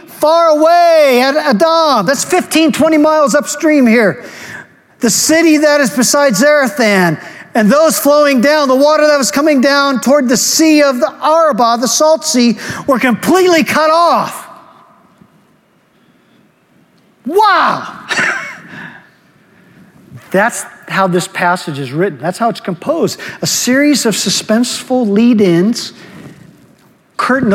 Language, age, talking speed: English, 50-69, 120 wpm